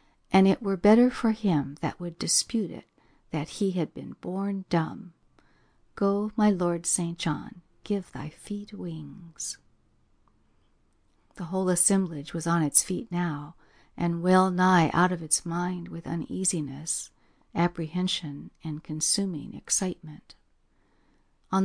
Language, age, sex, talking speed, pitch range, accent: English, 60-79, female, 130 wpm, 160-190 Hz, American